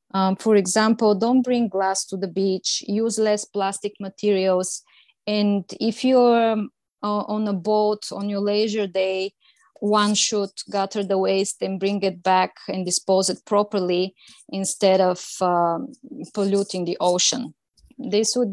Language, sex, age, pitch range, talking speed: English, female, 20-39, 195-225 Hz, 150 wpm